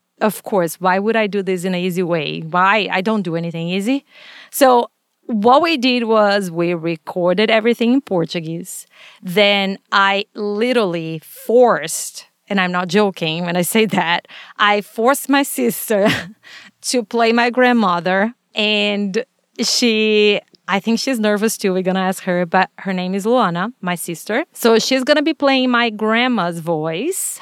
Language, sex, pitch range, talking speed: English, female, 185-235 Hz, 165 wpm